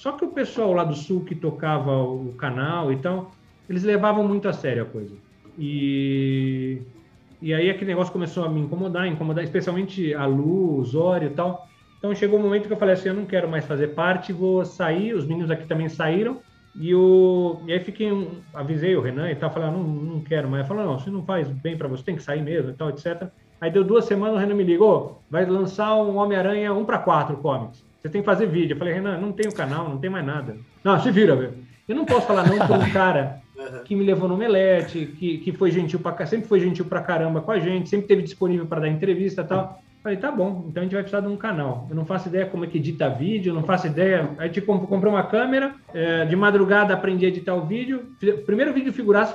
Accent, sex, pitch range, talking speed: Brazilian, male, 155-200 Hz, 245 wpm